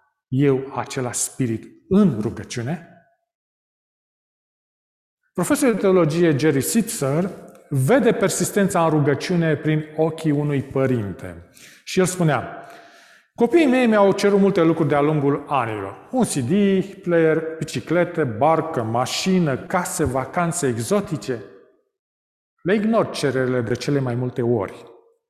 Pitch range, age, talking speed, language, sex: 135-195 Hz, 40-59, 110 wpm, Romanian, male